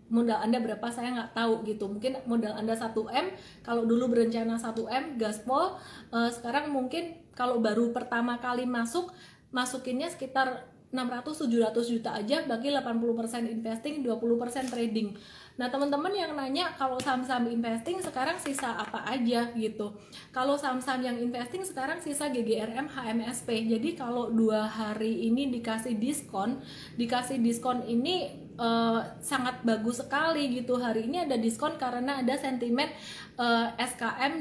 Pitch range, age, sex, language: 230-260 Hz, 20-39, female, Indonesian